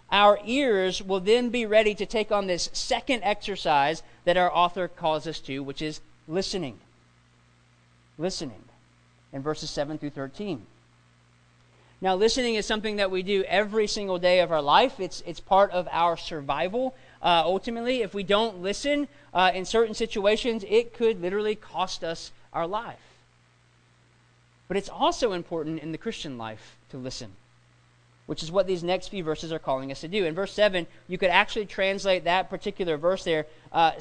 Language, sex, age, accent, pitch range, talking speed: English, male, 40-59, American, 155-205 Hz, 170 wpm